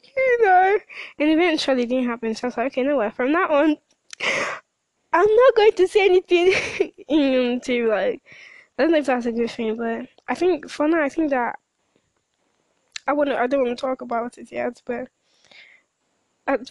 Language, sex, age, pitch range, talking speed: English, female, 10-29, 235-300 Hz, 185 wpm